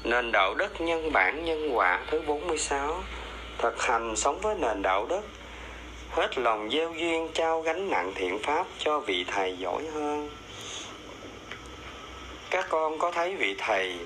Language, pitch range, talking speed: Vietnamese, 110-165 Hz, 155 wpm